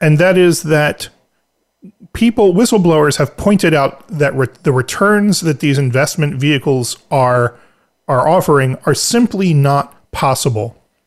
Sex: male